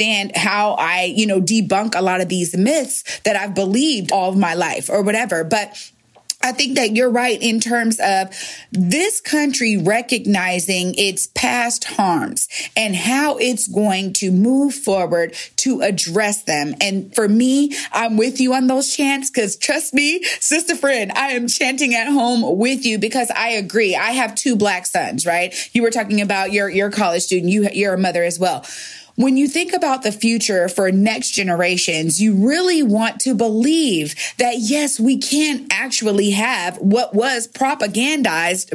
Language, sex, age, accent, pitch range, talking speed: English, female, 30-49, American, 195-255 Hz, 170 wpm